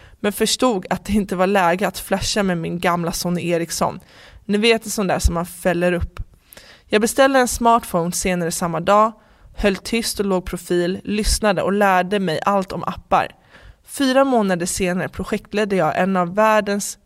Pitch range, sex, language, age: 180-210 Hz, female, English, 20-39